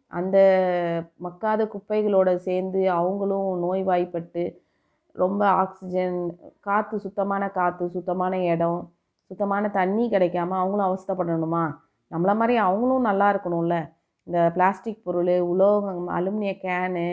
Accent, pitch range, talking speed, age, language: native, 170-205 Hz, 100 wpm, 30-49, Tamil